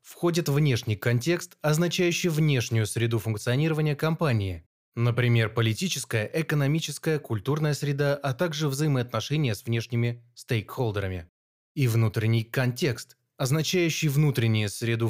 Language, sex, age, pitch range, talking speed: Russian, male, 20-39, 110-150 Hz, 100 wpm